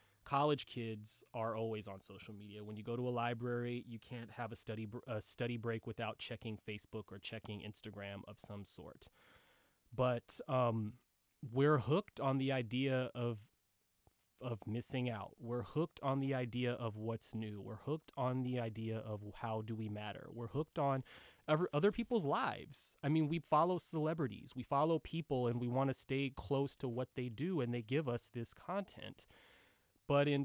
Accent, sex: American, male